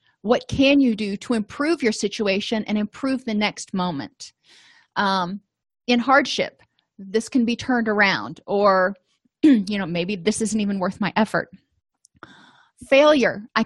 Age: 30-49